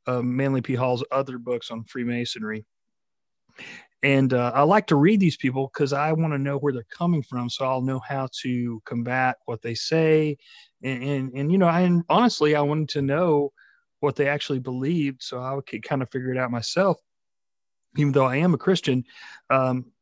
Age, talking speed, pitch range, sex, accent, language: 40-59, 195 wpm, 125-155 Hz, male, American, English